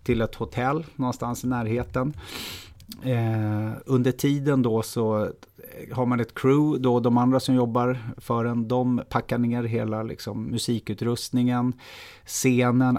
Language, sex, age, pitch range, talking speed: Swedish, male, 30-49, 110-130 Hz, 135 wpm